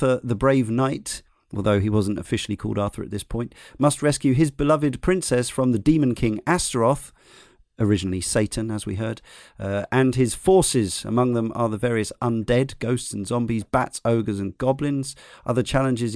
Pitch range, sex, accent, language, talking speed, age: 105-130 Hz, male, British, English, 175 wpm, 40-59